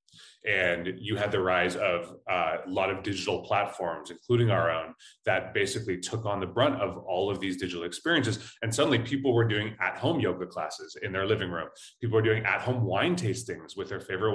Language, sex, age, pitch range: English, male, 30-49, 100-125 Hz